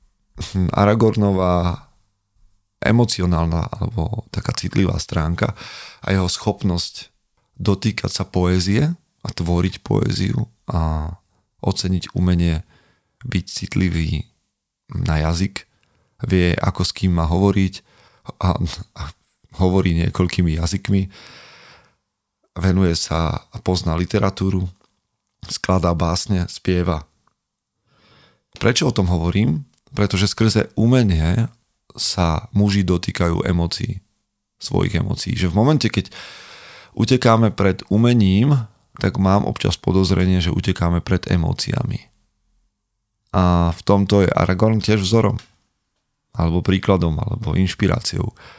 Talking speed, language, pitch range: 100 wpm, Slovak, 85-105 Hz